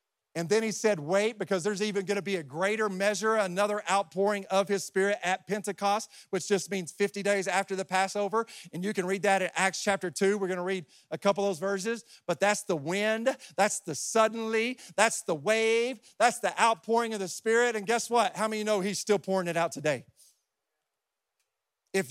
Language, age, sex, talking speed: English, 40-59, male, 205 wpm